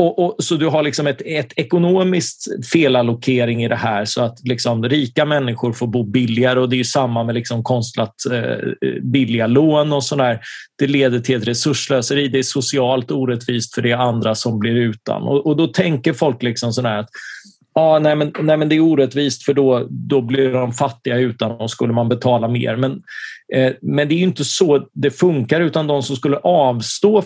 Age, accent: 30-49, native